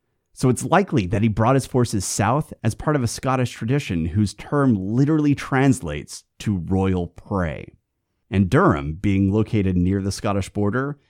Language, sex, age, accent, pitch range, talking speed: English, male, 30-49, American, 90-120 Hz, 160 wpm